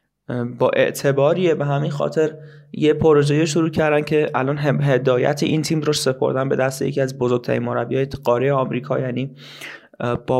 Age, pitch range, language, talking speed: 20-39, 125-145 Hz, Persian, 150 wpm